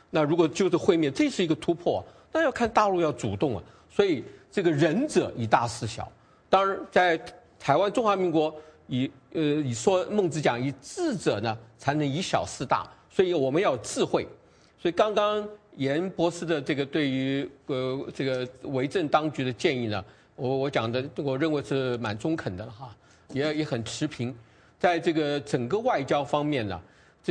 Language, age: English, 50-69